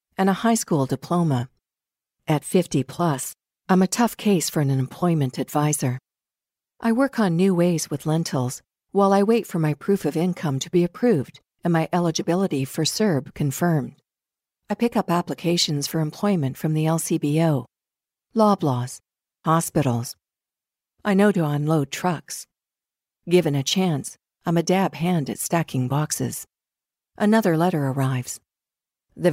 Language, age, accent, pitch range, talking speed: English, 50-69, American, 145-185 Hz, 140 wpm